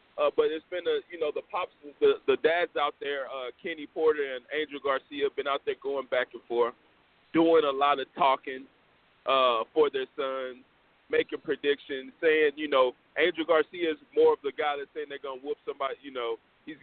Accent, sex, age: American, male, 30-49